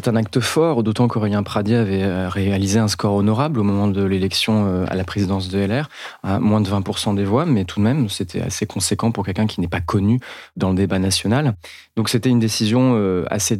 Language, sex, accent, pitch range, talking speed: French, male, French, 95-115 Hz, 215 wpm